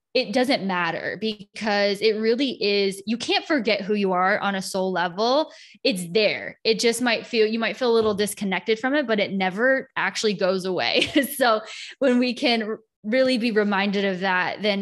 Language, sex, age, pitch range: English, female, 10-29, 195-240 Hz